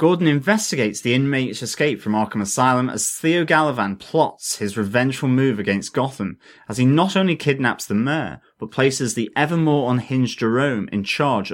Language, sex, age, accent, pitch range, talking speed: English, male, 30-49, British, 105-140 Hz, 165 wpm